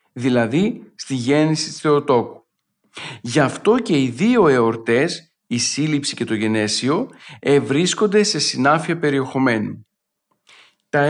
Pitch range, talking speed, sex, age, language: 125-175 Hz, 115 wpm, male, 50-69, Greek